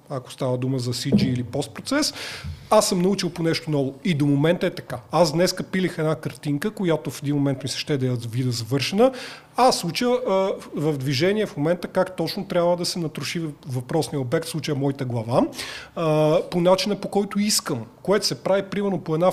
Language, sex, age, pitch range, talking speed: Bulgarian, male, 30-49, 145-195 Hz, 200 wpm